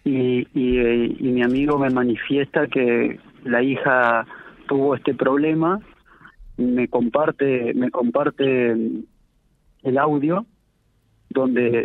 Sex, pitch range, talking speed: male, 125-160 Hz, 100 wpm